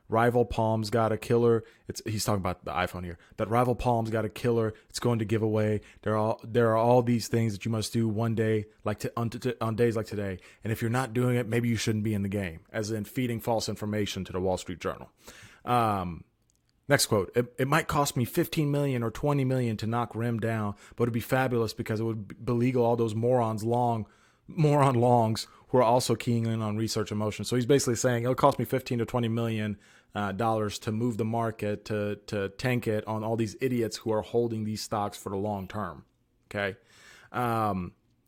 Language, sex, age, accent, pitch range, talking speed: English, male, 30-49, American, 105-120 Hz, 225 wpm